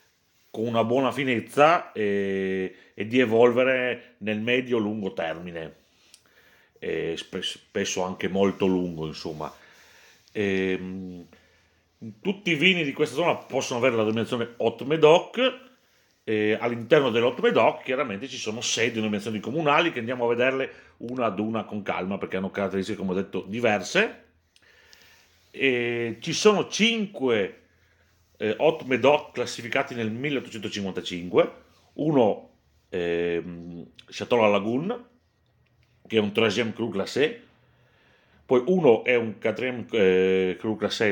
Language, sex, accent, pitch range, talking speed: Italian, male, native, 95-130 Hz, 125 wpm